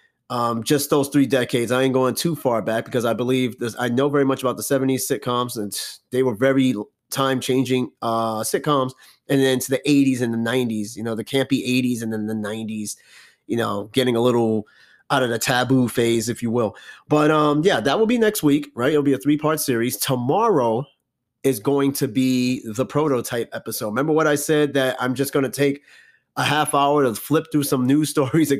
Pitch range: 125-150 Hz